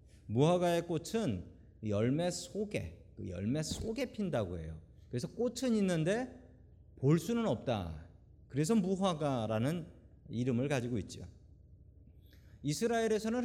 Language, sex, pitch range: Korean, male, 105-170 Hz